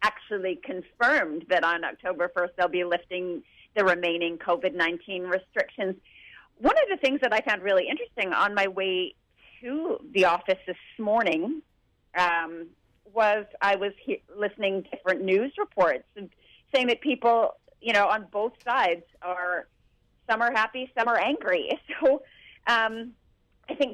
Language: English